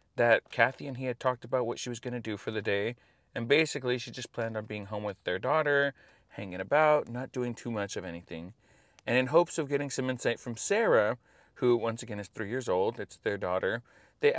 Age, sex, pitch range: 30-49, male, 110-150 Hz